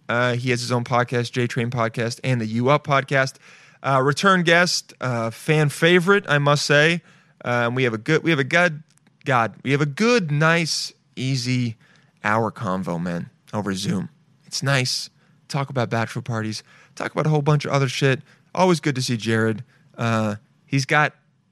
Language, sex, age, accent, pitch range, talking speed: English, male, 30-49, American, 120-160 Hz, 185 wpm